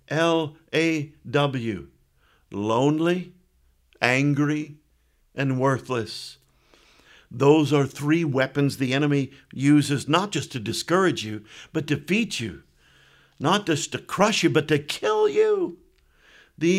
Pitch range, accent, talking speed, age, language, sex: 115-170 Hz, American, 120 wpm, 50-69, English, male